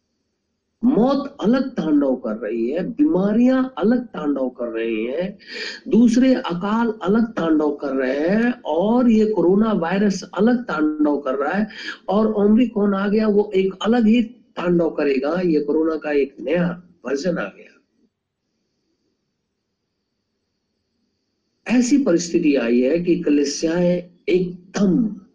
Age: 50-69